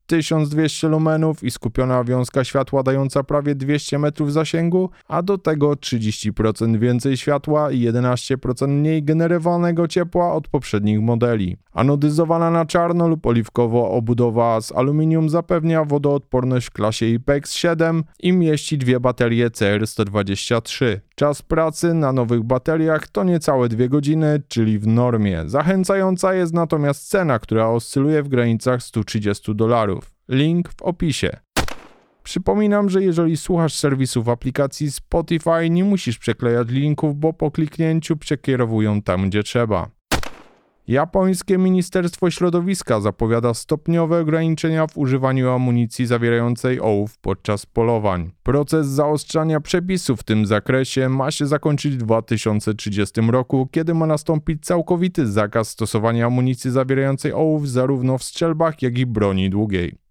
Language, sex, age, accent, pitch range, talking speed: Polish, male, 20-39, native, 120-160 Hz, 130 wpm